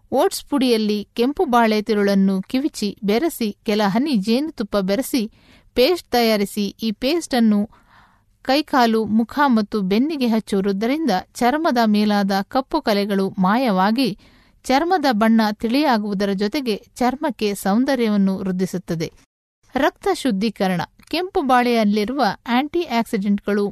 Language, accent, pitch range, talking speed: Kannada, native, 205-260 Hz, 100 wpm